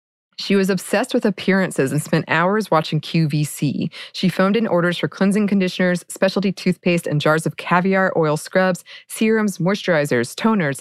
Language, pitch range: English, 155-195 Hz